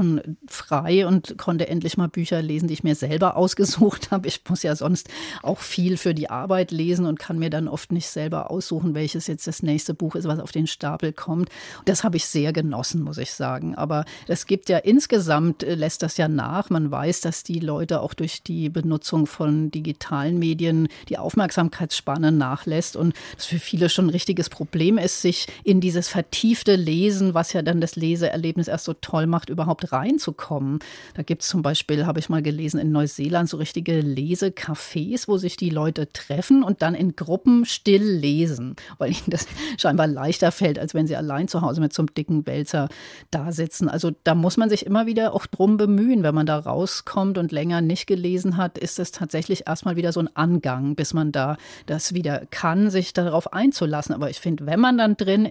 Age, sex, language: 40-59, female, German